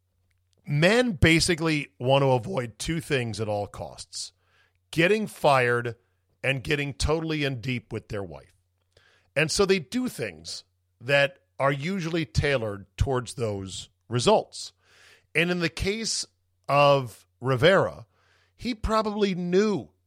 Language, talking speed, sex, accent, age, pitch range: English, 125 wpm, male, American, 40-59, 110-150 Hz